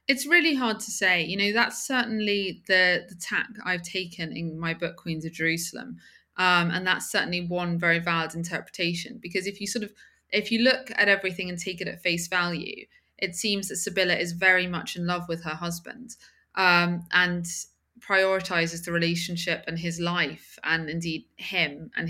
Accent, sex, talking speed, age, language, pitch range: British, female, 185 wpm, 20-39, English, 170-190 Hz